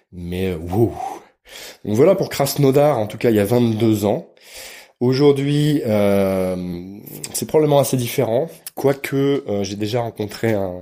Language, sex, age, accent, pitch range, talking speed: French, male, 20-39, French, 90-115 Hz, 140 wpm